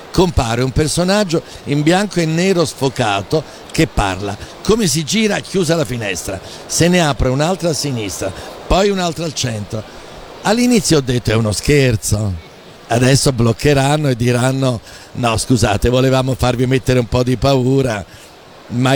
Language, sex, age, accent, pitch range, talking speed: Italian, male, 60-79, native, 125-185 Hz, 145 wpm